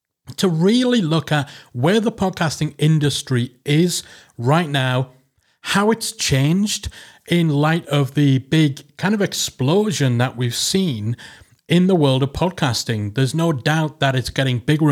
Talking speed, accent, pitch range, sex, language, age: 150 wpm, British, 130-165 Hz, male, English, 40-59